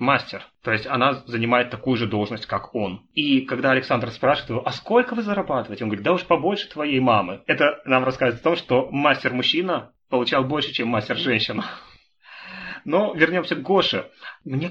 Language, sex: Russian, male